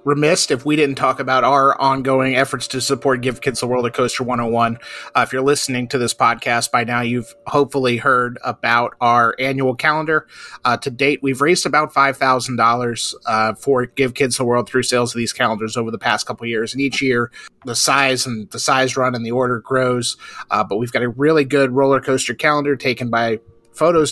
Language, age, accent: English, 30-49, American